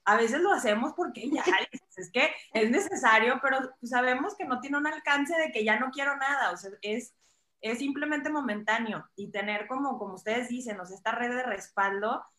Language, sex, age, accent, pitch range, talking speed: Spanish, female, 20-39, Mexican, 200-245 Hz, 200 wpm